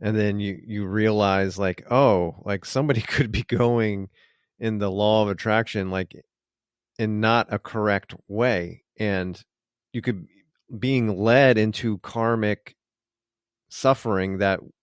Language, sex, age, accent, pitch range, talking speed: English, male, 40-59, American, 105-125 Hz, 130 wpm